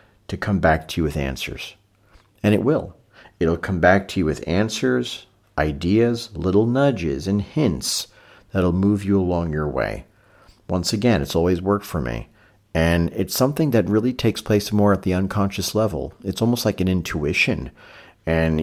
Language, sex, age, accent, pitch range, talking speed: English, male, 40-59, American, 80-110 Hz, 170 wpm